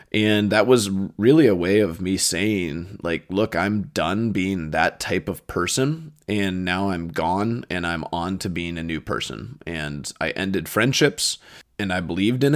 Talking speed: 180 wpm